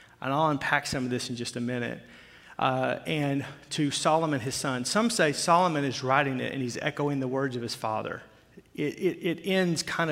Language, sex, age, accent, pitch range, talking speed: English, male, 40-59, American, 130-170 Hz, 210 wpm